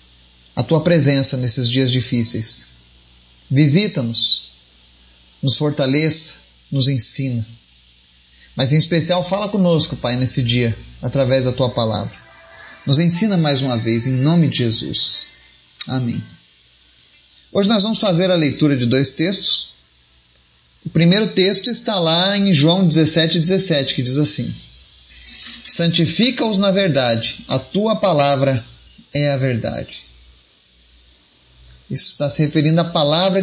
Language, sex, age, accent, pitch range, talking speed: Portuguese, male, 30-49, Brazilian, 110-185 Hz, 125 wpm